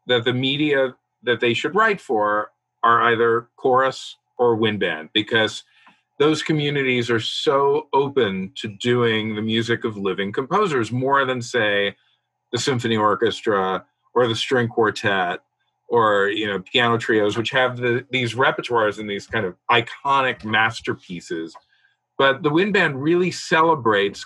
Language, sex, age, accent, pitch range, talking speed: English, male, 50-69, American, 115-160 Hz, 145 wpm